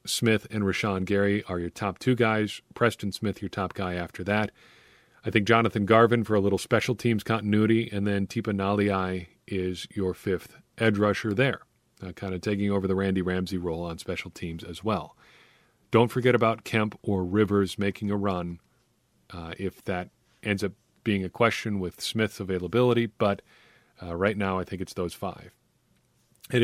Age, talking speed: 40-59, 180 wpm